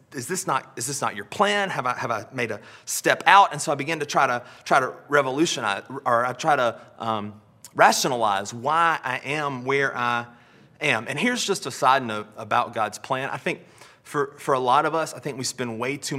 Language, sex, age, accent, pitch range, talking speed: English, male, 30-49, American, 125-155 Hz, 225 wpm